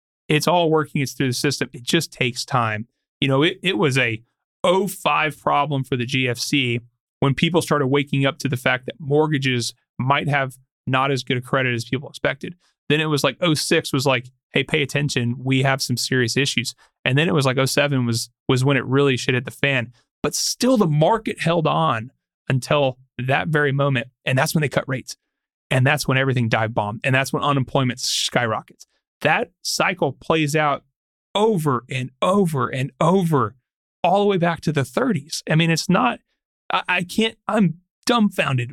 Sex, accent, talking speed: male, American, 190 wpm